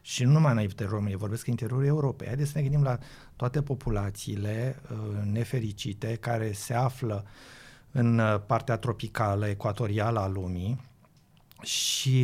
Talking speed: 145 wpm